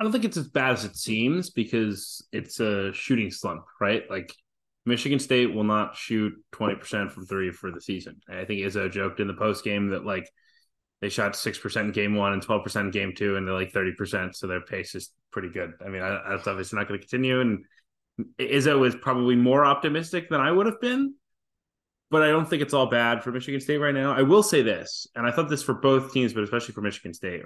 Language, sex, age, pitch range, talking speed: English, male, 20-39, 100-130 Hz, 235 wpm